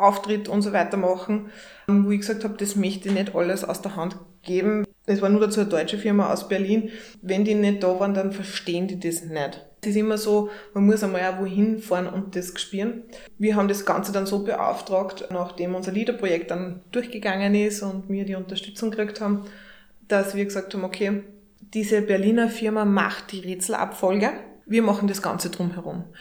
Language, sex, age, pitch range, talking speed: German, female, 20-39, 190-215 Hz, 195 wpm